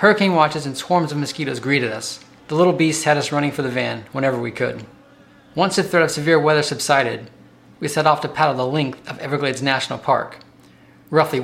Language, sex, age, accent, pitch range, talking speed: English, male, 30-49, American, 130-155 Hz, 205 wpm